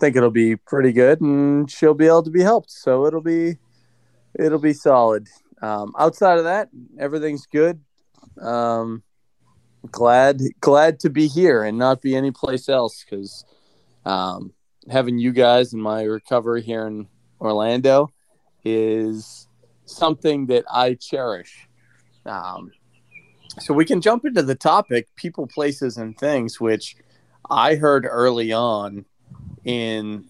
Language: English